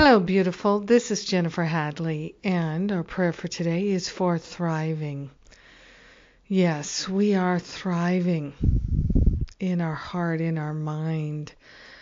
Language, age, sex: English, 50-69, female